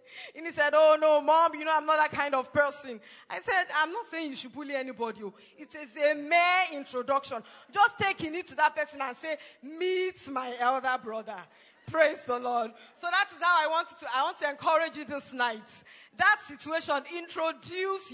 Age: 20-39